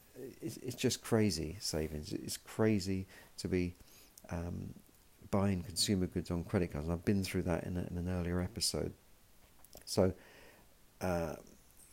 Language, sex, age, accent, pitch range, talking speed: English, male, 50-69, British, 85-105 Hz, 135 wpm